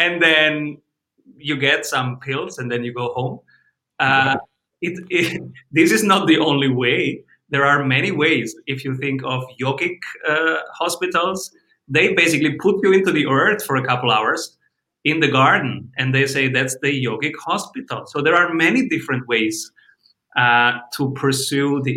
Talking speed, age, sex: 170 wpm, 30-49, male